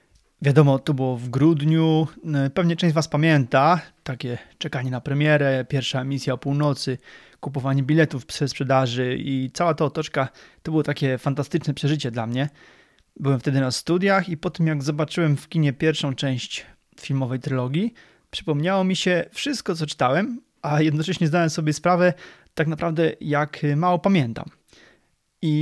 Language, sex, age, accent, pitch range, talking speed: Polish, male, 30-49, native, 135-165 Hz, 150 wpm